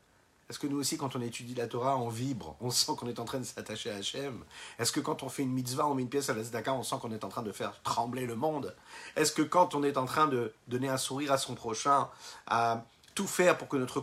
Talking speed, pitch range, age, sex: 280 wpm, 125-155 Hz, 50-69, male